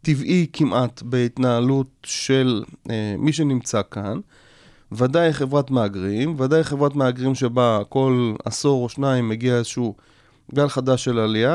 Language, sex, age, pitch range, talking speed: Hebrew, male, 30-49, 120-155 Hz, 130 wpm